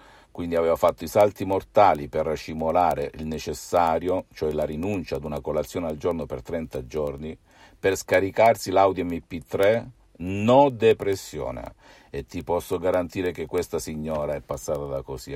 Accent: native